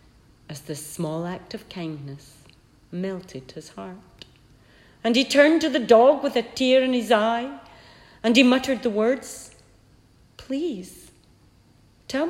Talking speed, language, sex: 135 wpm, English, female